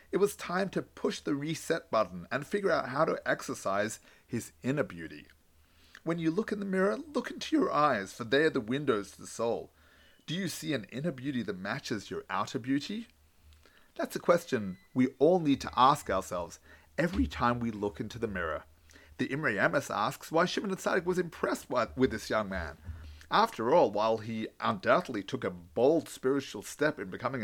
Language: English